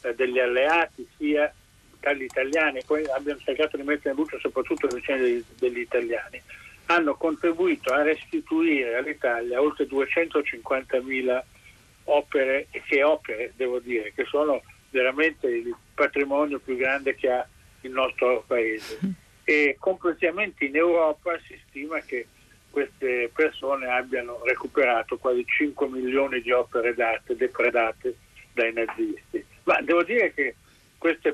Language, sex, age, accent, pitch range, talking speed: Italian, male, 50-69, native, 130-200 Hz, 130 wpm